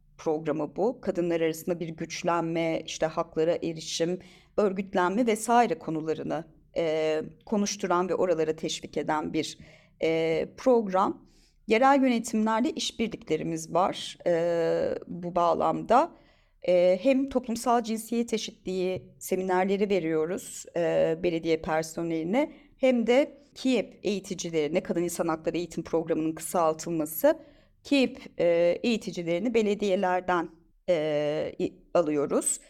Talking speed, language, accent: 95 wpm, Turkish, native